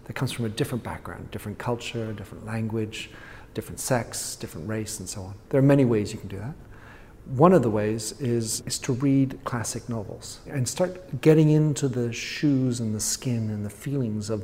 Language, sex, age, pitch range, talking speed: English, male, 50-69, 110-135 Hz, 200 wpm